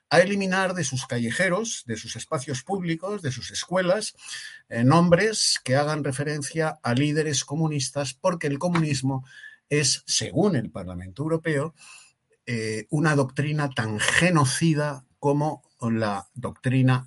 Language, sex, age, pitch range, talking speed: Spanish, male, 60-79, 125-170 Hz, 125 wpm